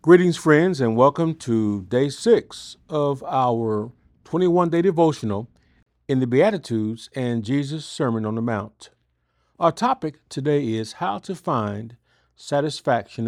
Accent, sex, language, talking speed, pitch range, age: American, male, English, 125 wpm, 110-165 Hz, 50-69